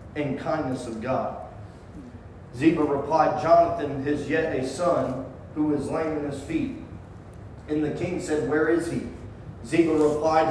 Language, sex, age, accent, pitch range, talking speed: English, male, 40-59, American, 140-170 Hz, 150 wpm